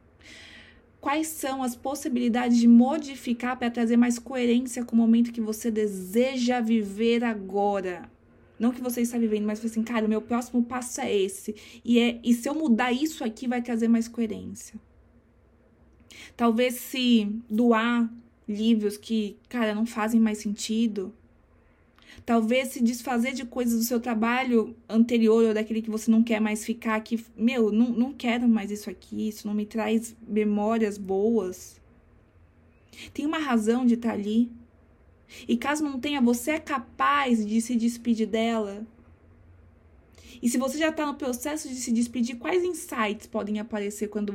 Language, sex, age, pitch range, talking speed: Portuguese, female, 20-39, 210-245 Hz, 155 wpm